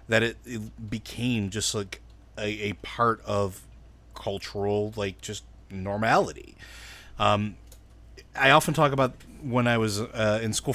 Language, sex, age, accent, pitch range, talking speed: English, male, 30-49, American, 100-115 Hz, 140 wpm